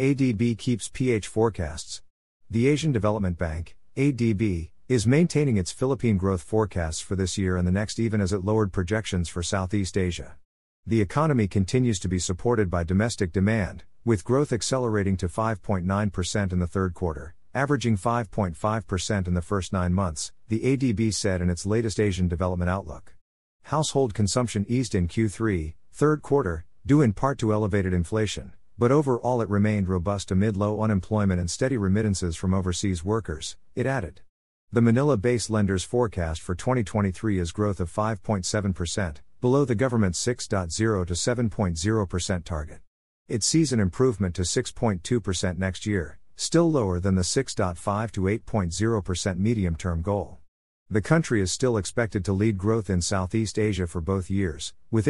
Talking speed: 155 wpm